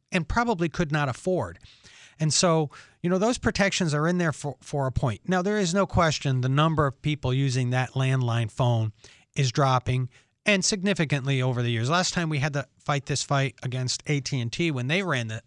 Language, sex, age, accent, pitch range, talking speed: English, male, 40-59, American, 120-160 Hz, 200 wpm